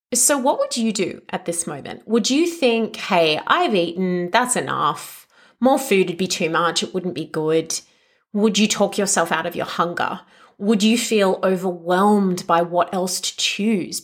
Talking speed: 185 wpm